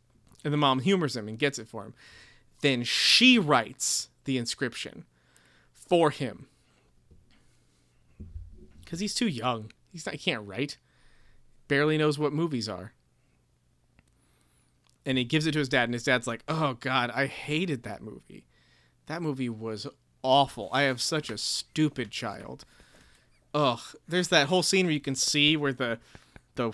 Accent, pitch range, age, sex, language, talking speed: American, 125-165 Hz, 30-49, male, English, 155 wpm